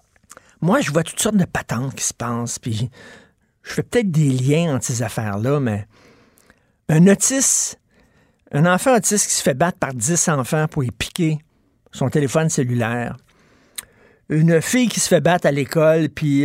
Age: 50-69